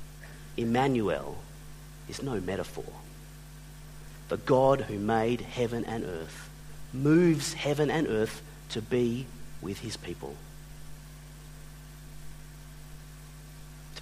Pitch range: 145-155 Hz